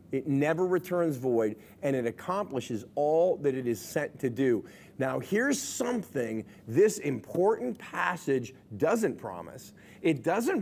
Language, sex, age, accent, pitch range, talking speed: English, male, 40-59, American, 125-170 Hz, 135 wpm